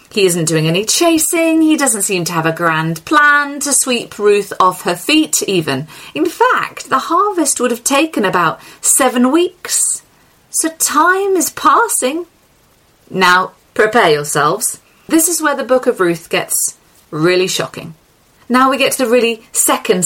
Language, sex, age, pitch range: English, female, 30-49, 175-265 Hz